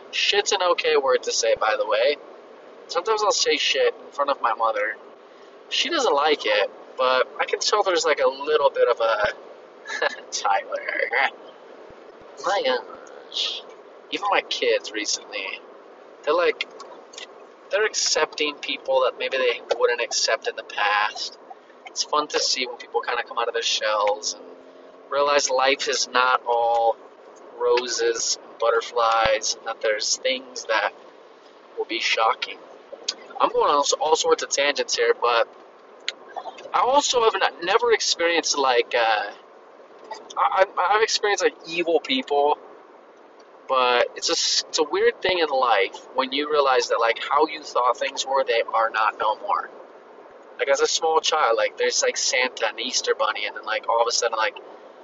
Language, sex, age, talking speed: English, male, 30-49, 160 wpm